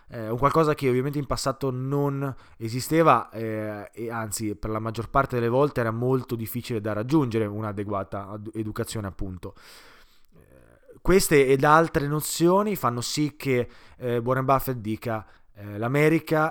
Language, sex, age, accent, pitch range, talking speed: Italian, male, 20-39, native, 110-140 Hz, 145 wpm